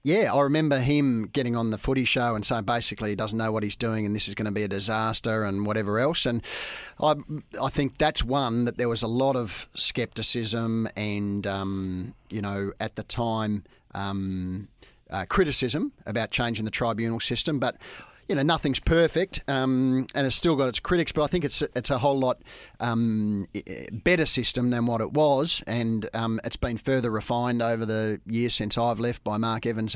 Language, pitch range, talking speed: English, 110-135 Hz, 200 wpm